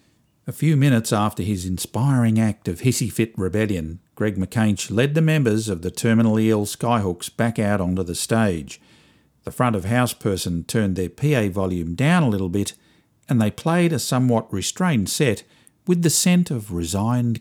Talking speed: 165 wpm